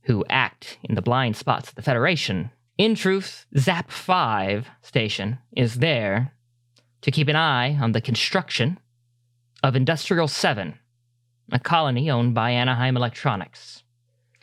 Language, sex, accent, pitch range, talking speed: English, male, American, 115-135 Hz, 130 wpm